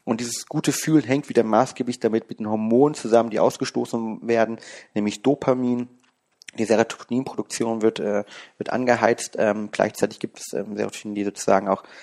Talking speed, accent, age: 155 wpm, German, 30-49